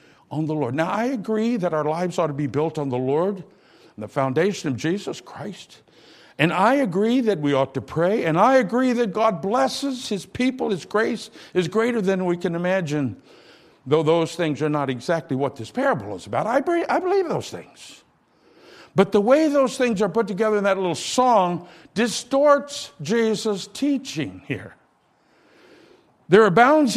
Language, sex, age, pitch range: English, male, 60-79, 170-240 Hz